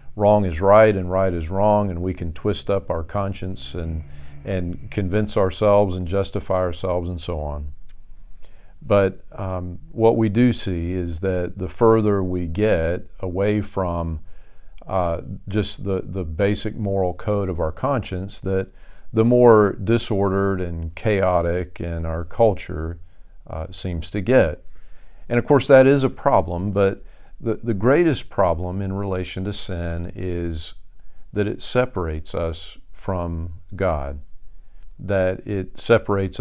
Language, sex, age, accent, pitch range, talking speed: English, male, 50-69, American, 85-105 Hz, 145 wpm